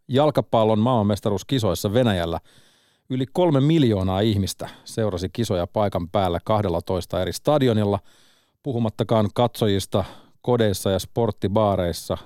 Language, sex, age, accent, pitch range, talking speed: Finnish, male, 40-59, native, 95-125 Hz, 100 wpm